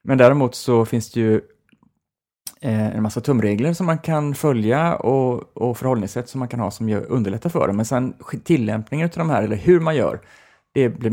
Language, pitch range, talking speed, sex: Swedish, 100-130 Hz, 190 wpm, male